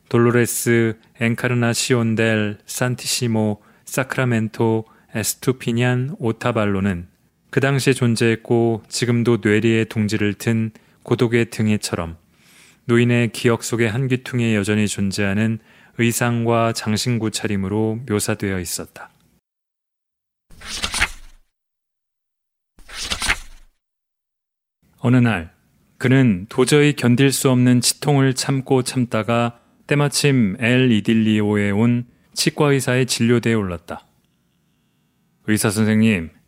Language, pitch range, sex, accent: Korean, 110-125 Hz, male, native